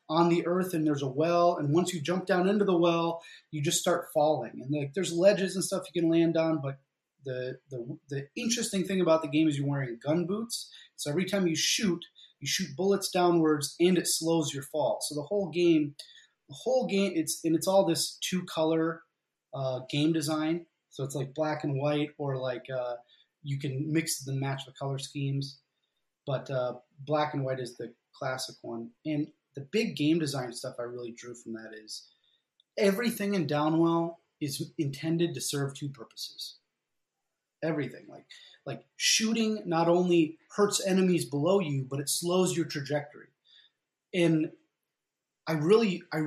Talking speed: 180 wpm